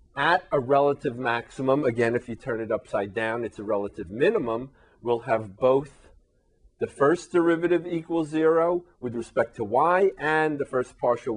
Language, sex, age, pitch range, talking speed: English, male, 40-59, 100-140 Hz, 165 wpm